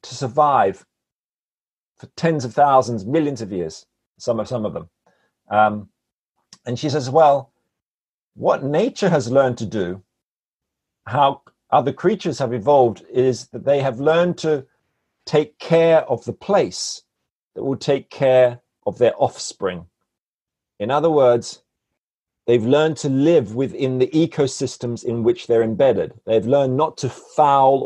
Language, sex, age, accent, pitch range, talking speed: English, male, 50-69, British, 115-145 Hz, 140 wpm